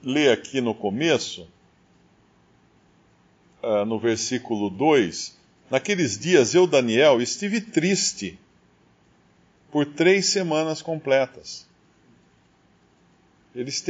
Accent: Brazilian